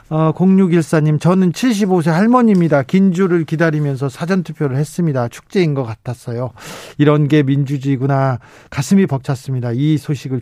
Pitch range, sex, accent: 130-175 Hz, male, native